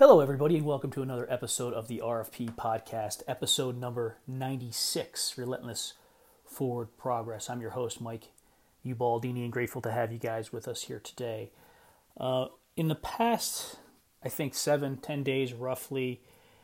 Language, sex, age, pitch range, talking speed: English, male, 30-49, 120-145 Hz, 150 wpm